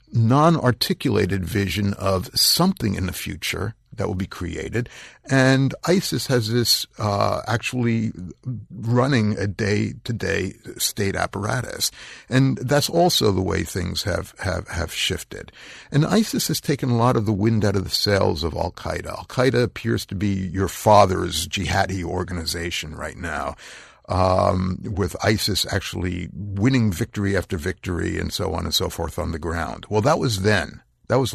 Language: English